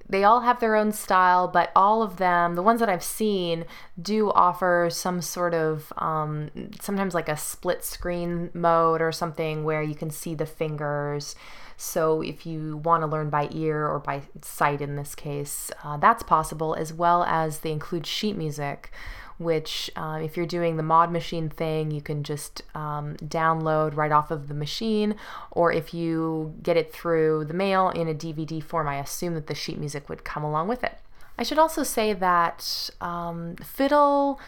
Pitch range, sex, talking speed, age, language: 155-190 Hz, female, 190 wpm, 20-39, English